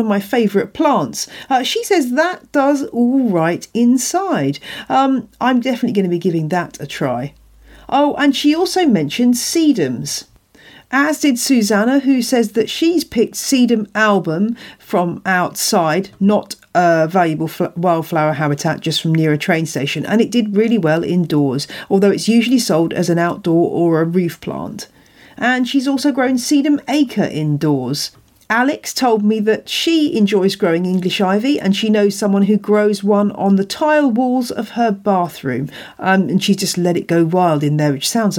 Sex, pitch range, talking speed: female, 170-255 Hz, 175 wpm